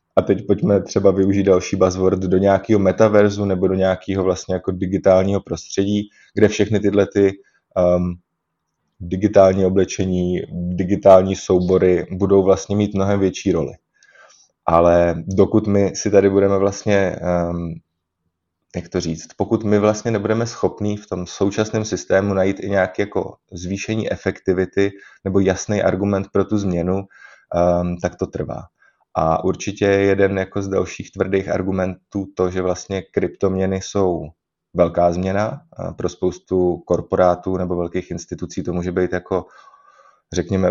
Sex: male